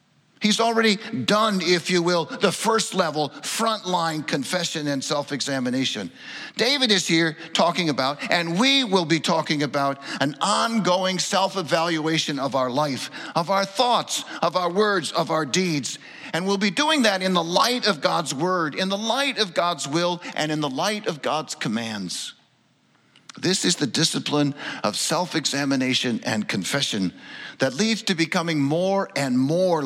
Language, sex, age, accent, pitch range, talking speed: English, male, 50-69, American, 135-195 Hz, 155 wpm